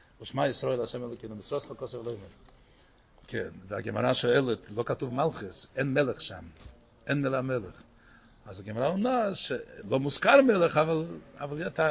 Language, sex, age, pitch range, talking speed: Hebrew, male, 60-79, 120-165 Hz, 140 wpm